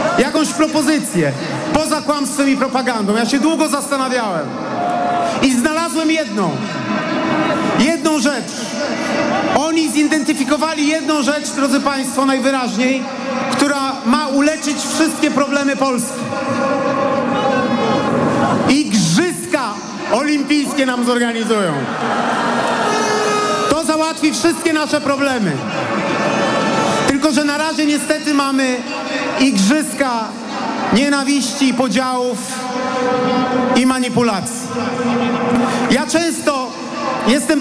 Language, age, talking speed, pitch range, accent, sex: Polish, 40-59, 85 wpm, 235-280 Hz, native, male